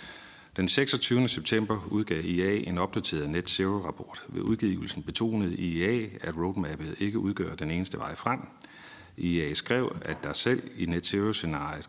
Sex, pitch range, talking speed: male, 85-105 Hz, 150 wpm